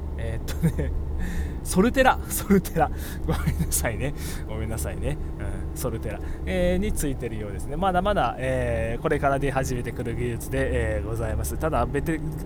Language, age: Japanese, 20-39